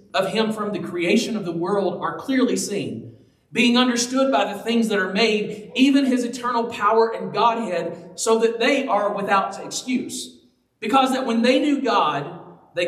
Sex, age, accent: male, 40-59, American